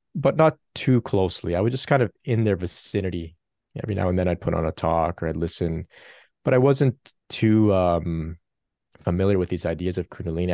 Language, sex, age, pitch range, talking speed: English, male, 30-49, 90-110 Hz, 200 wpm